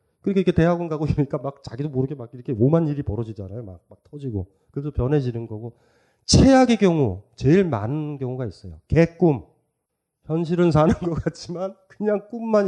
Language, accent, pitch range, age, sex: Korean, native, 105-150 Hz, 30-49, male